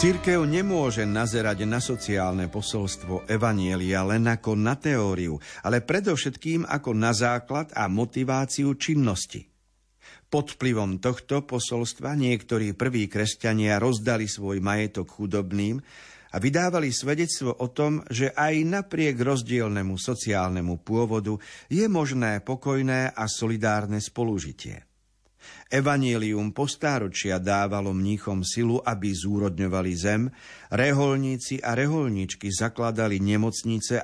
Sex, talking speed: male, 105 wpm